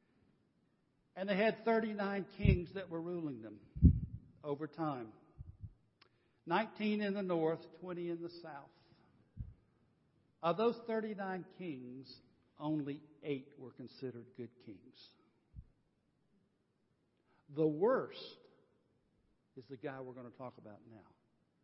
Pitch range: 130-190 Hz